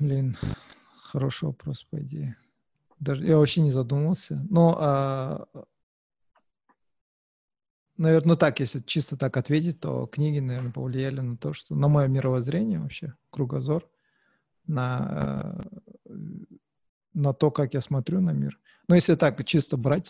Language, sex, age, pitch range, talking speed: Russian, male, 40-59, 130-150 Hz, 120 wpm